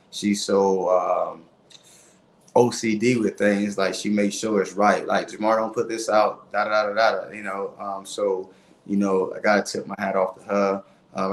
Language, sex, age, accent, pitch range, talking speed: English, male, 20-39, American, 95-105 Hz, 200 wpm